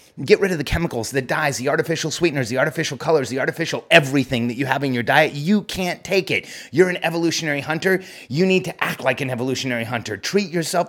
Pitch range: 130-165 Hz